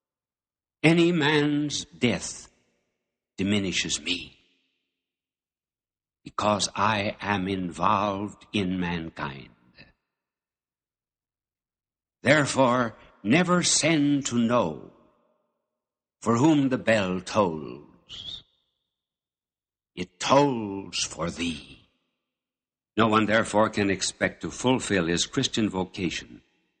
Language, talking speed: English, 80 wpm